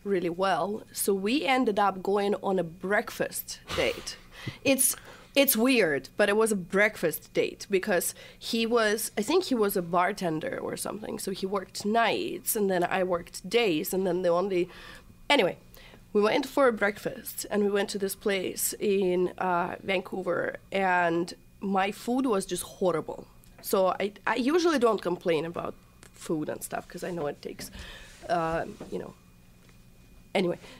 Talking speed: 165 wpm